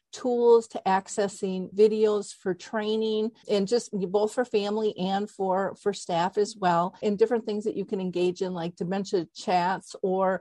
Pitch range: 180-205 Hz